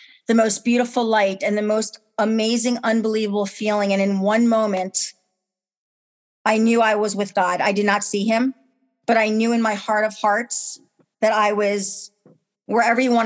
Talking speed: 170 wpm